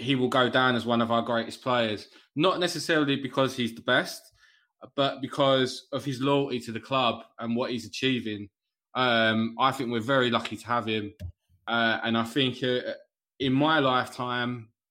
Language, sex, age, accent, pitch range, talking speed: English, male, 20-39, British, 115-130 Hz, 175 wpm